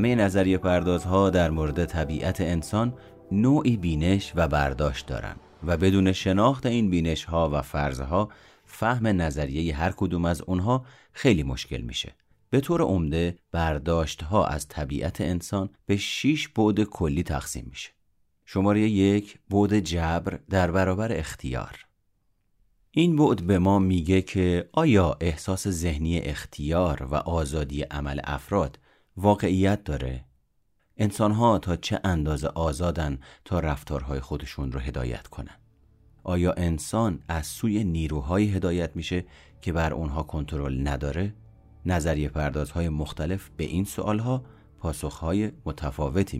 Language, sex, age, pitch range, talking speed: Persian, male, 30-49, 75-100 Hz, 125 wpm